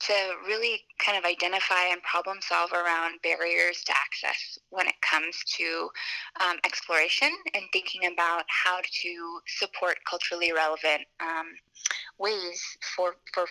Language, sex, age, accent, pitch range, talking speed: English, female, 20-39, American, 175-205 Hz, 135 wpm